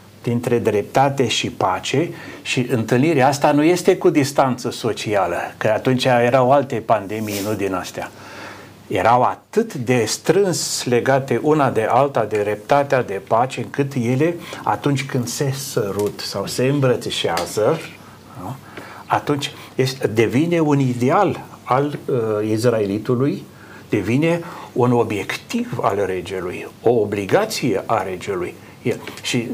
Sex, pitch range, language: male, 105-135 Hz, Romanian